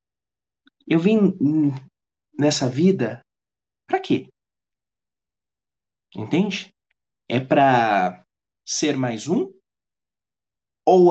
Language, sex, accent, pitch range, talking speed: Portuguese, male, Brazilian, 125-155 Hz, 70 wpm